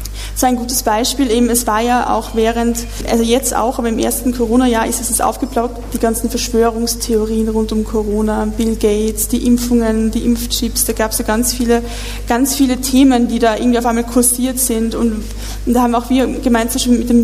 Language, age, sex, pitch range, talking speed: German, 20-39, female, 220-245 Hz, 200 wpm